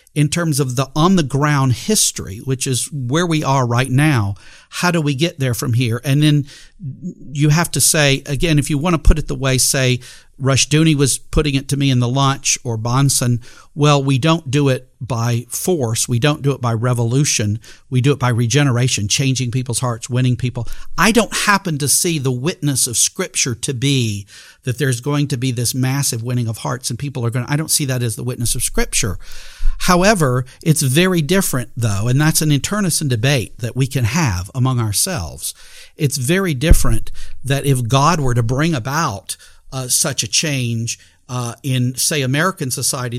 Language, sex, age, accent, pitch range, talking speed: English, male, 50-69, American, 125-160 Hz, 195 wpm